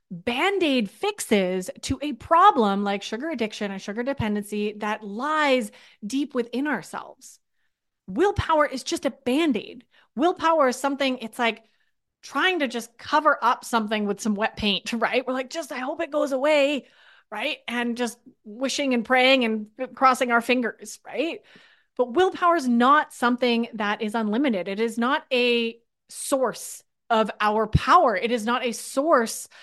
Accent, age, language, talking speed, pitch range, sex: American, 30-49, English, 155 wpm, 215-275 Hz, female